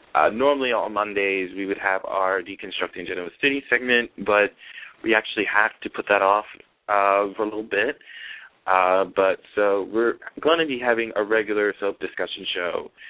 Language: English